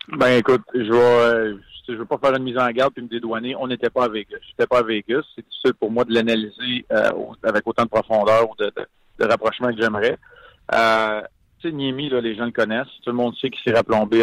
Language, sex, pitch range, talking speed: French, male, 110-125 Hz, 240 wpm